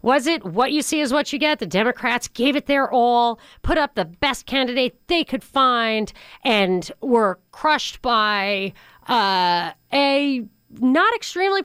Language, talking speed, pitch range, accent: English, 160 wpm, 210-270 Hz, American